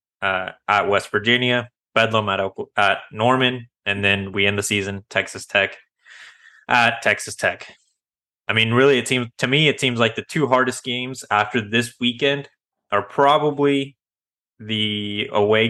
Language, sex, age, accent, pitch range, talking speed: English, male, 20-39, American, 100-120 Hz, 155 wpm